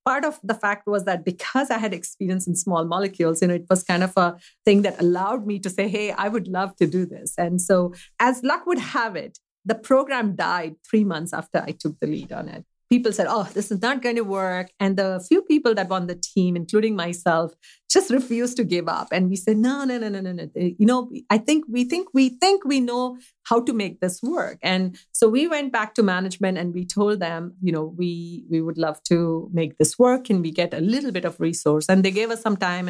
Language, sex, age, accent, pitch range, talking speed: English, female, 50-69, Indian, 175-235 Hz, 250 wpm